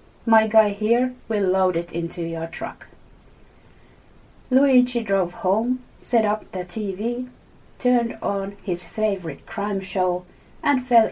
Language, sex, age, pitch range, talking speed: English, female, 30-49, 185-230 Hz, 130 wpm